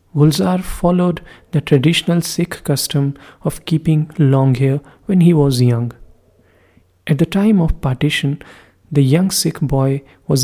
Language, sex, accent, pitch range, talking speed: English, male, Indian, 125-150 Hz, 140 wpm